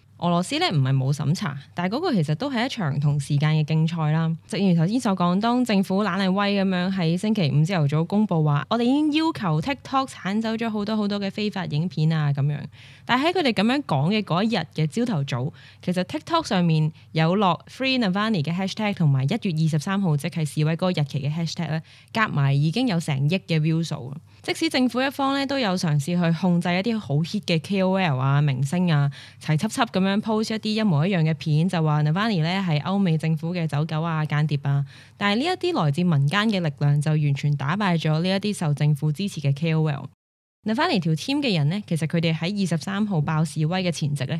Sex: female